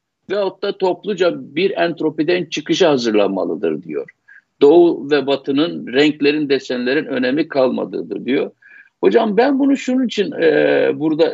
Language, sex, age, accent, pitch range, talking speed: Turkish, male, 60-79, native, 170-255 Hz, 120 wpm